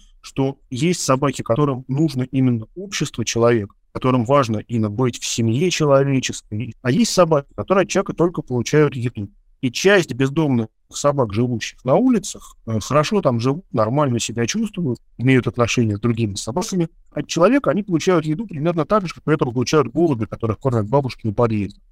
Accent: native